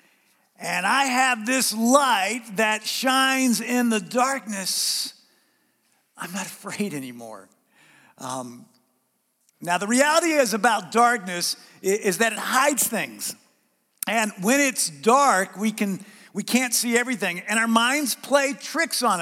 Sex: male